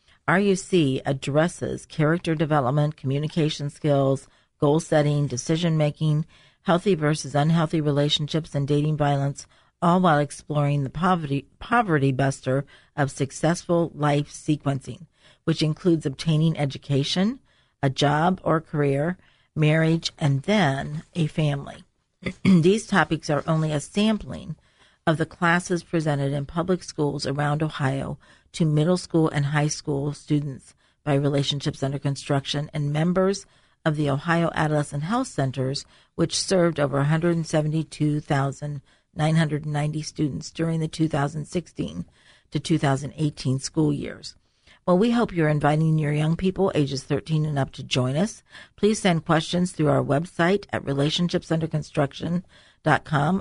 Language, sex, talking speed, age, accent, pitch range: English, female, 120 wpm, 50-69, American, 145-165 Hz